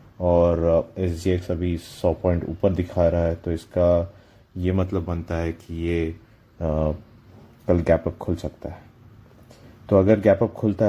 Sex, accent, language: male, native, Hindi